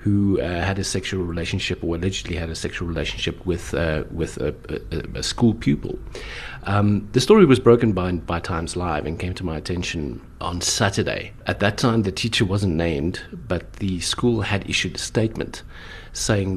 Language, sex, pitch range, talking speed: English, male, 85-105 Hz, 185 wpm